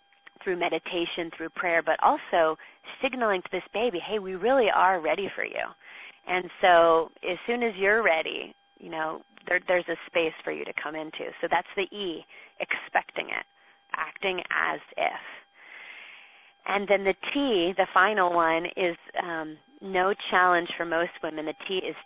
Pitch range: 160-190 Hz